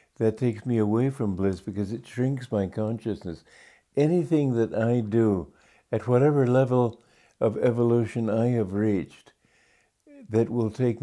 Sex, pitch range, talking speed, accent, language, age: male, 100-120 Hz, 140 wpm, American, English, 60-79